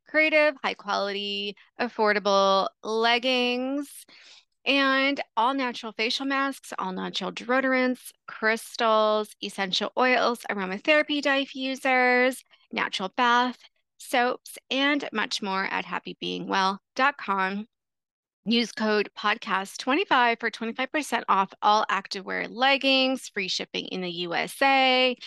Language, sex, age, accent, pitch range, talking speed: English, female, 30-49, American, 200-265 Hz, 95 wpm